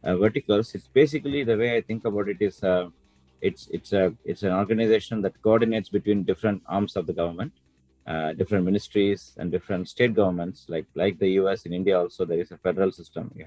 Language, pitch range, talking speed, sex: English, 85-105 Hz, 210 wpm, male